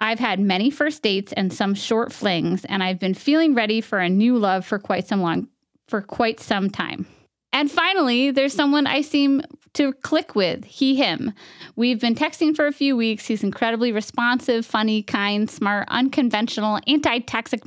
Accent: American